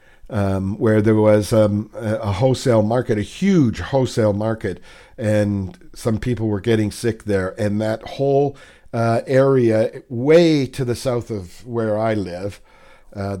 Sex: male